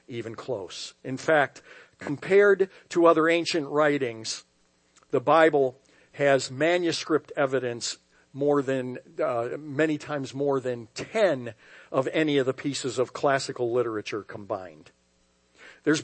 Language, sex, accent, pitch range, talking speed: English, male, American, 135-180 Hz, 120 wpm